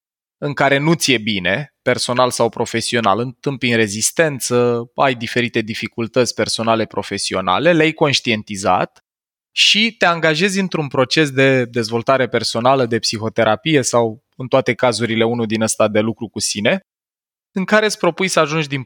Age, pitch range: 20-39, 120-165 Hz